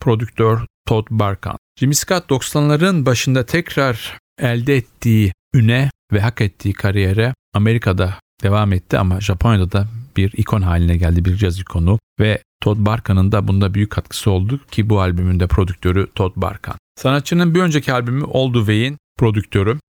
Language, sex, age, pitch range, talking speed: Turkish, male, 40-59, 95-115 Hz, 150 wpm